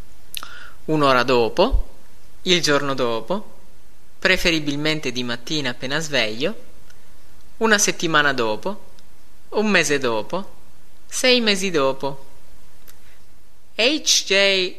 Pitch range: 125-175 Hz